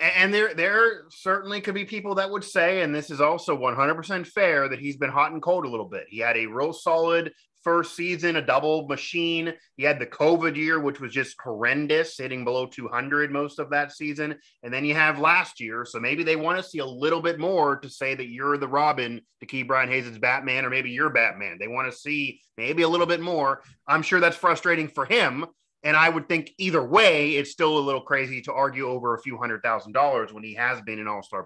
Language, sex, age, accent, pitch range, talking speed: English, male, 30-49, American, 130-170 Hz, 235 wpm